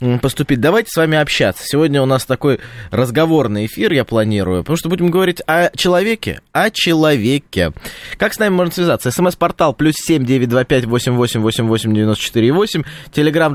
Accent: native